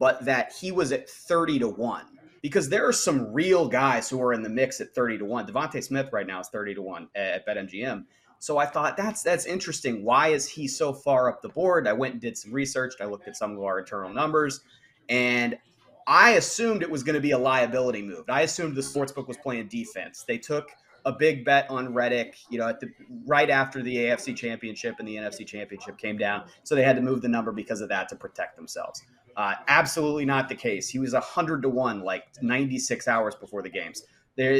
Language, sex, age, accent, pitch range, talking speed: English, male, 30-49, American, 120-160 Hz, 230 wpm